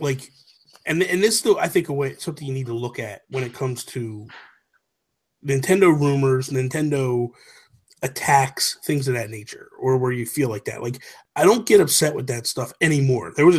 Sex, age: male, 30-49